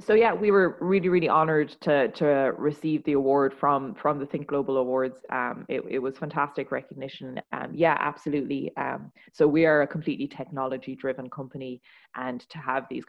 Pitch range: 130-155 Hz